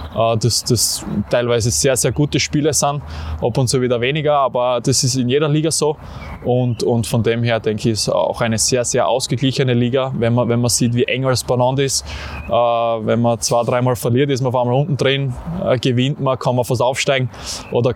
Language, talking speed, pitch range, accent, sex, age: German, 205 wpm, 120-140 Hz, Austrian, male, 20-39